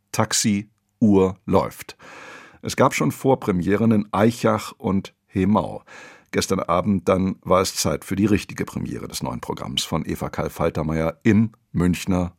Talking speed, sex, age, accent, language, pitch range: 145 wpm, male, 50-69, German, German, 95-120 Hz